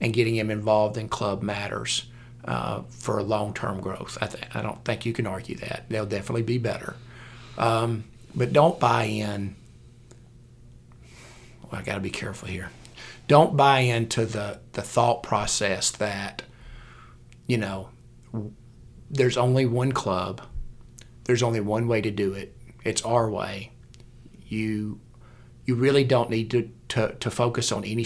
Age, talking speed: 40-59, 155 wpm